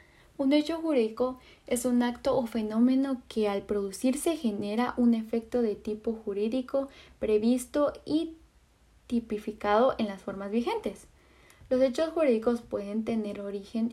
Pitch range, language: 215-275 Hz, Spanish